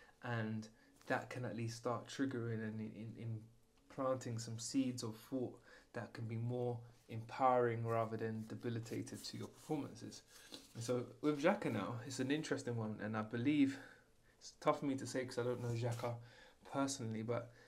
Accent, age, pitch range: British, 20-39, 110-125 Hz